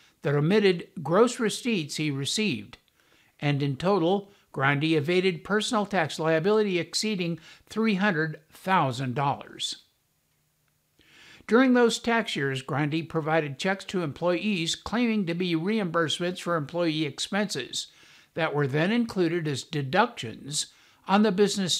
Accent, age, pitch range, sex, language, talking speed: American, 60-79, 150-200 Hz, male, English, 115 wpm